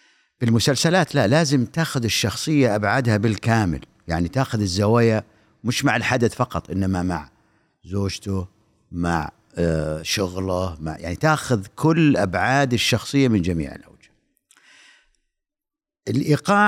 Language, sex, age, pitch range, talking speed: Arabic, male, 50-69, 100-140 Hz, 105 wpm